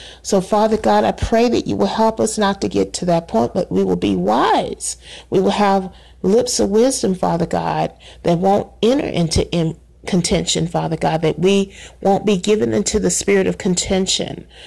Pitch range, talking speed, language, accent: 165-205 Hz, 190 wpm, English, American